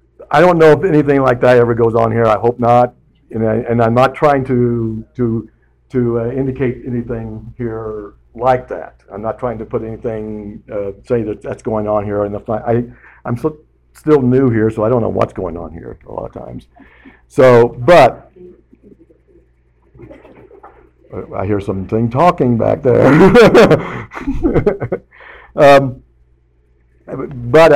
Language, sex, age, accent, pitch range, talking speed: English, male, 60-79, American, 105-130 Hz, 155 wpm